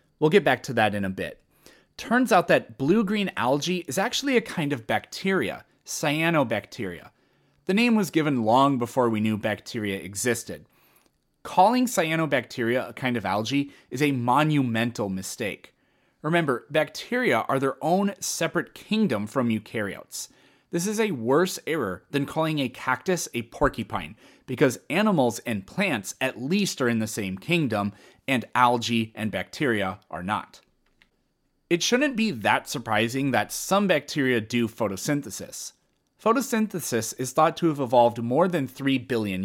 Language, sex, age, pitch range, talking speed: English, male, 30-49, 115-170 Hz, 150 wpm